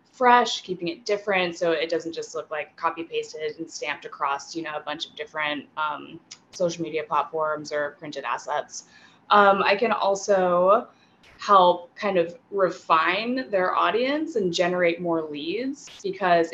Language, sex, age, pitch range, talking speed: English, female, 20-39, 160-200 Hz, 155 wpm